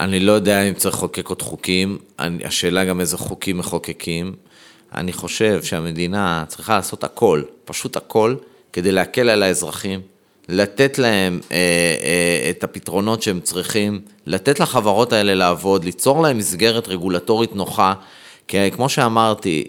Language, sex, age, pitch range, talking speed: Hebrew, male, 30-49, 95-140 Hz, 145 wpm